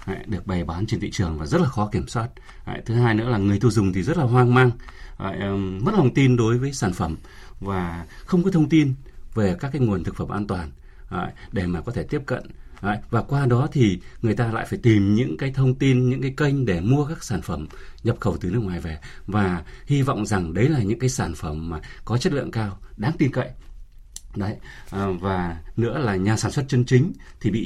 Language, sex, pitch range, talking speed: Vietnamese, male, 95-130 Hz, 230 wpm